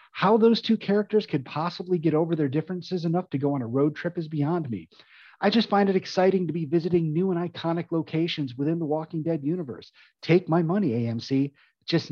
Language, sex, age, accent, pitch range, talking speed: English, male, 30-49, American, 140-185 Hz, 210 wpm